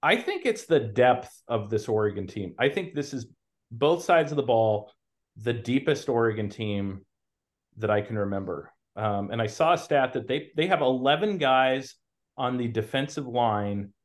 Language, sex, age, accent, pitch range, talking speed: English, male, 30-49, American, 105-125 Hz, 180 wpm